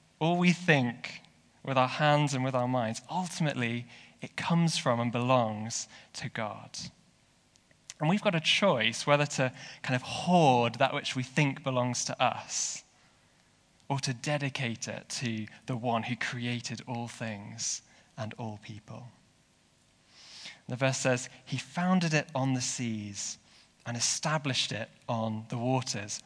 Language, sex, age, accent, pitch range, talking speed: English, male, 20-39, British, 120-155 Hz, 145 wpm